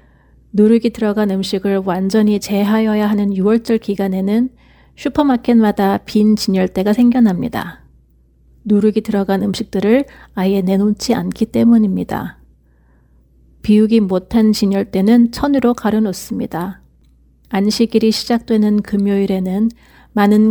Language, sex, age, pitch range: Korean, female, 40-59, 195-220 Hz